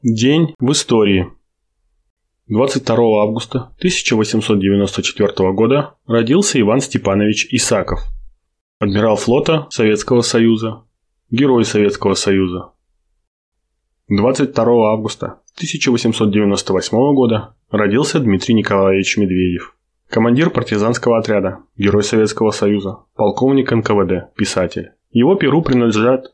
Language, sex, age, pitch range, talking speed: Russian, male, 20-39, 100-125 Hz, 85 wpm